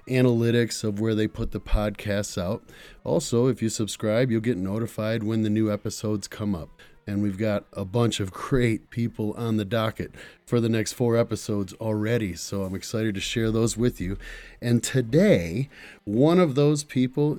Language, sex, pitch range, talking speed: English, male, 100-120 Hz, 180 wpm